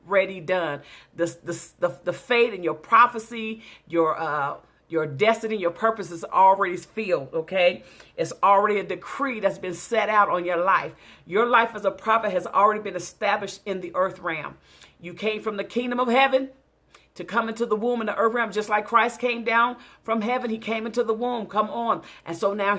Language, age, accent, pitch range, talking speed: English, 40-59, American, 185-225 Hz, 200 wpm